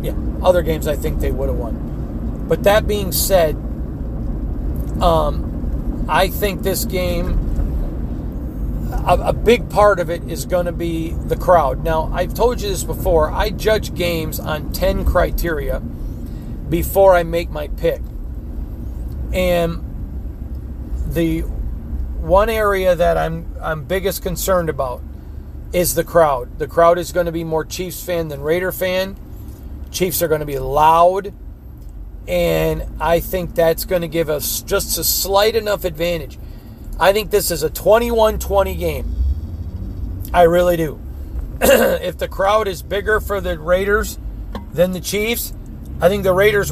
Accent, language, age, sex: American, English, 40-59, male